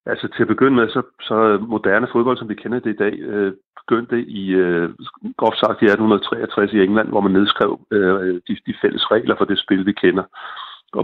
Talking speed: 180 wpm